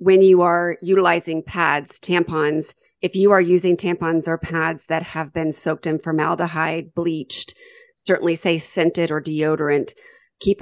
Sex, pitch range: female, 150-180 Hz